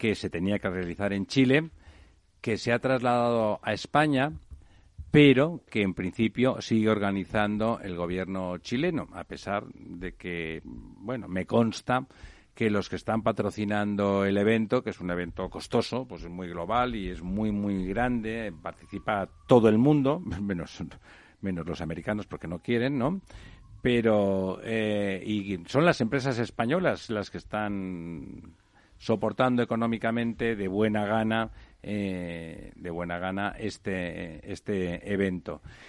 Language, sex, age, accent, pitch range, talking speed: Spanish, male, 60-79, Spanish, 90-120 Hz, 140 wpm